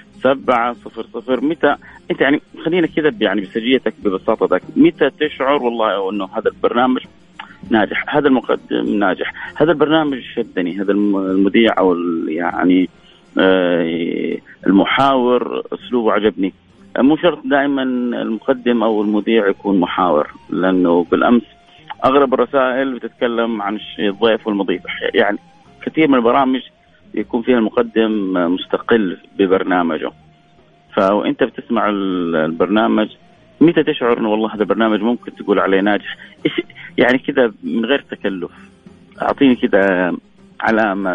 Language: Arabic